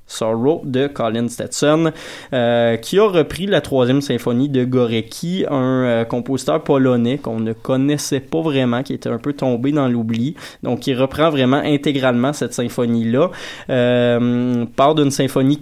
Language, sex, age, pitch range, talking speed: French, male, 20-39, 120-140 Hz, 155 wpm